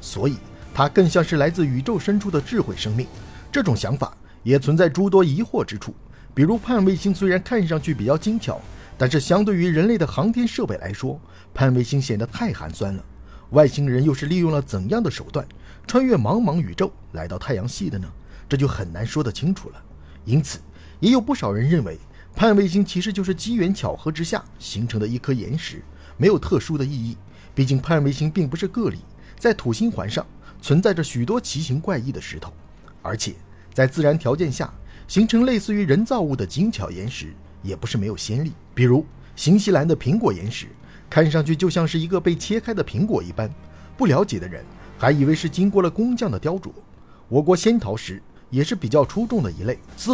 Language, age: Chinese, 50-69